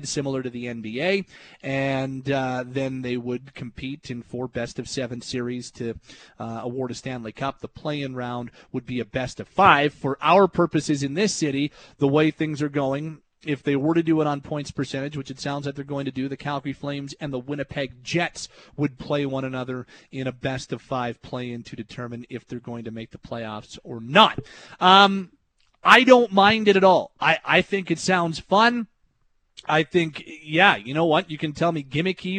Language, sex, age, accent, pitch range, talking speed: English, male, 30-49, American, 135-170 Hz, 205 wpm